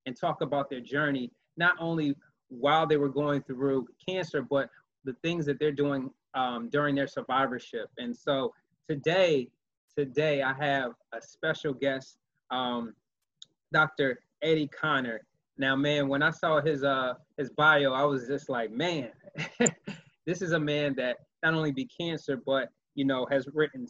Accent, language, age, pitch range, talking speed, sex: American, English, 20-39, 130-155 Hz, 160 wpm, male